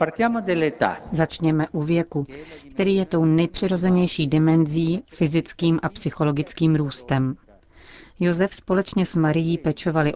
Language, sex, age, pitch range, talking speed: Czech, female, 40-59, 145-170 Hz, 100 wpm